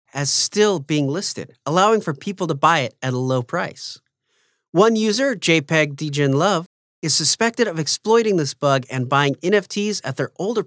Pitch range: 140-200 Hz